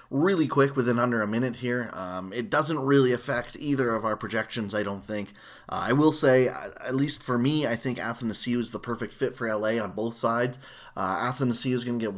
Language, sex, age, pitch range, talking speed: English, male, 20-39, 110-130 Hz, 220 wpm